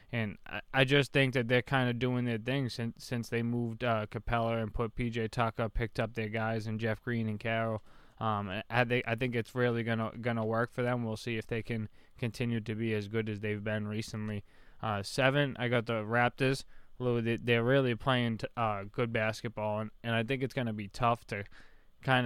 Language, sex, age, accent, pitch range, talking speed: English, male, 20-39, American, 110-125 Hz, 215 wpm